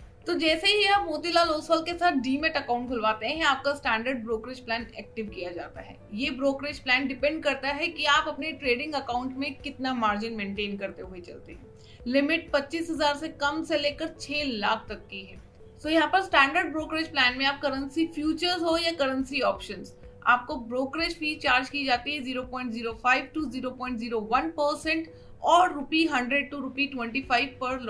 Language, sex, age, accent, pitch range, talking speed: English, female, 30-49, Indian, 250-310 Hz, 145 wpm